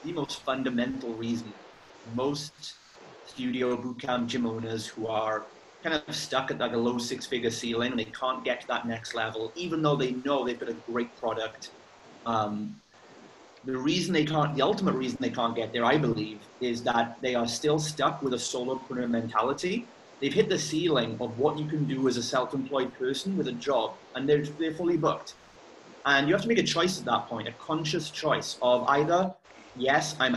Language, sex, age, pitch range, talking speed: English, male, 30-49, 115-140 Hz, 200 wpm